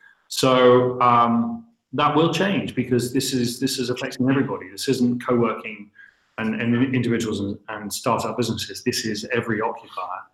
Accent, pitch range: British, 110-130 Hz